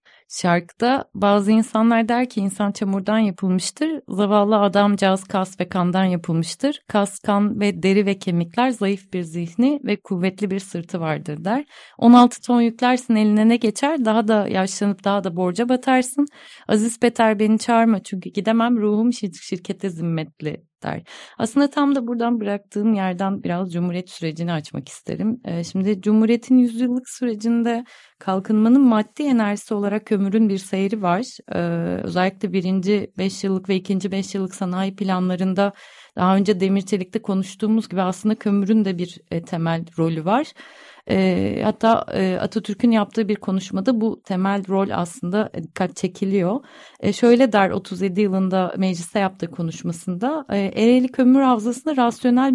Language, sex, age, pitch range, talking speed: Turkish, female, 30-49, 190-240 Hz, 135 wpm